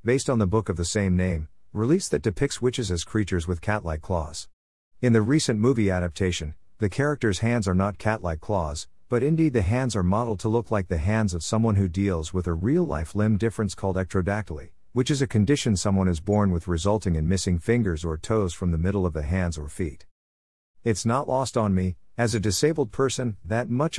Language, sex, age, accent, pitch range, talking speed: English, male, 50-69, American, 90-115 Hz, 210 wpm